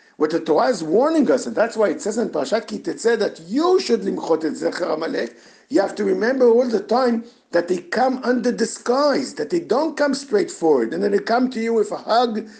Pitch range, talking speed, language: 215-315 Hz, 210 wpm, English